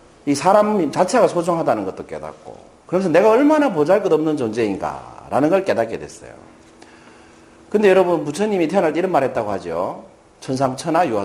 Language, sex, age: Korean, male, 40-59